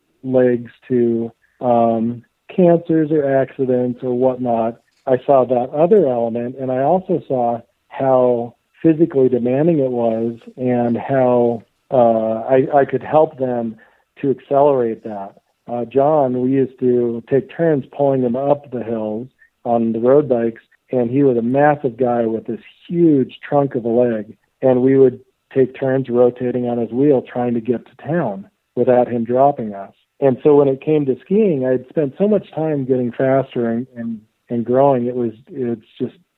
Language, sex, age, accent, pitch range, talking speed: English, male, 50-69, American, 120-145 Hz, 170 wpm